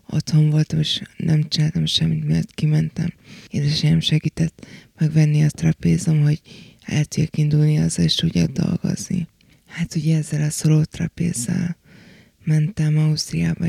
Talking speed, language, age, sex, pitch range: 125 wpm, Hungarian, 20-39, female, 155-170 Hz